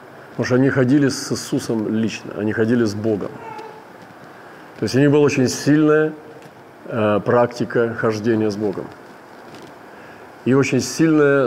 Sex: male